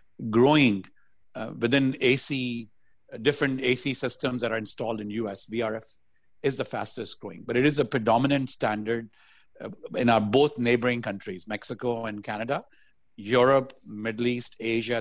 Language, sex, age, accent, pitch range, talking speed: English, male, 50-69, Indian, 110-135 Hz, 150 wpm